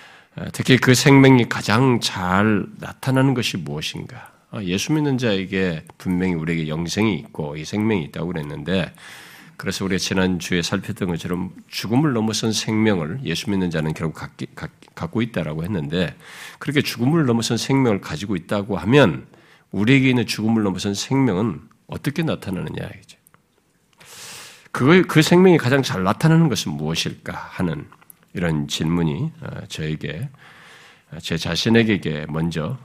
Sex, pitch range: male, 90-130 Hz